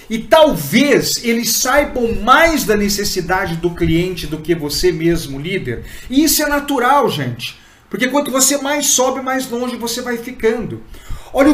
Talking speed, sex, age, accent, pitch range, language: 155 wpm, male, 50-69, Brazilian, 160-255 Hz, Portuguese